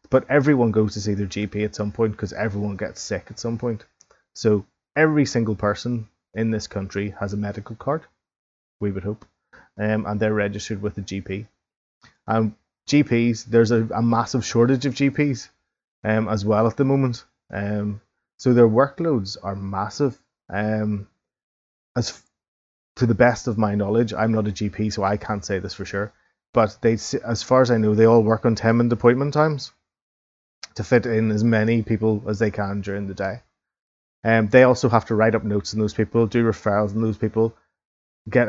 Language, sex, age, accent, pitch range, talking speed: English, male, 20-39, Irish, 100-115 Hz, 190 wpm